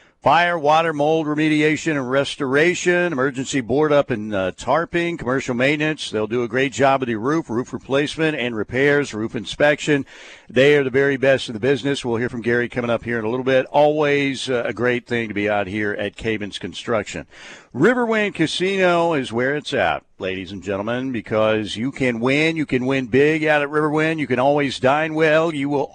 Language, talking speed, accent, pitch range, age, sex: English, 195 wpm, American, 125-155 Hz, 50-69, male